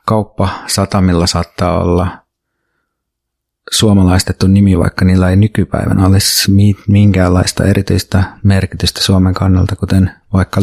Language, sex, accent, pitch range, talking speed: Finnish, male, native, 95-105 Hz, 95 wpm